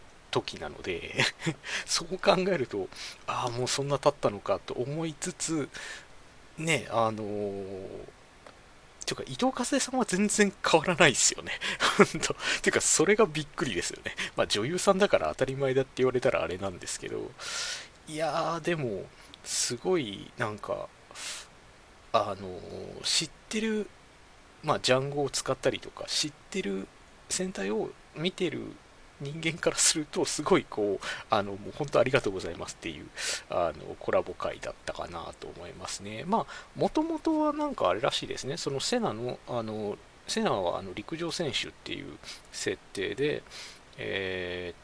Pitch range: 130-185 Hz